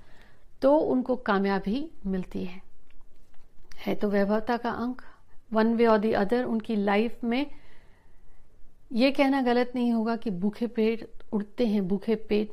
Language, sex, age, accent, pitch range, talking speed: Hindi, female, 50-69, native, 200-245 Hz, 145 wpm